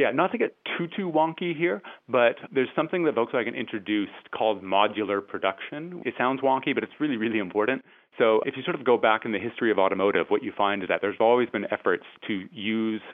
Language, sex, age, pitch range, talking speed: English, male, 30-49, 95-120 Hz, 220 wpm